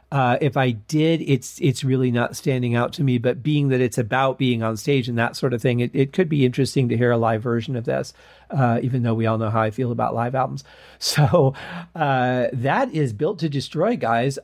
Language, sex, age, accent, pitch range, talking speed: English, male, 40-59, American, 120-140 Hz, 235 wpm